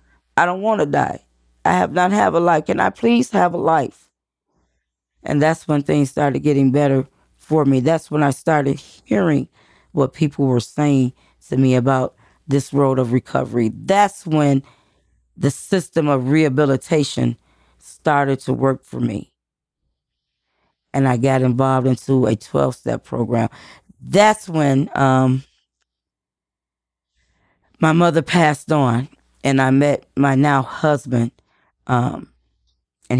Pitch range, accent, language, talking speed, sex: 125-150 Hz, American, English, 135 wpm, female